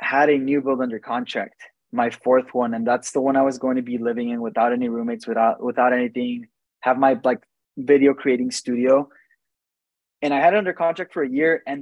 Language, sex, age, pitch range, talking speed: English, male, 20-39, 125-145 Hz, 215 wpm